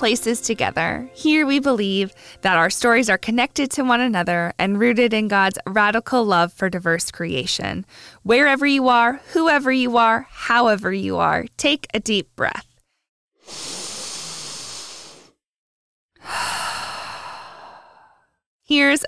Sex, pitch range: female, 200-275 Hz